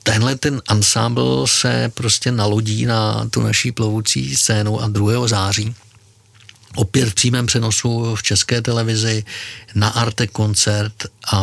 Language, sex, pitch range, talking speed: Czech, male, 105-115 Hz, 120 wpm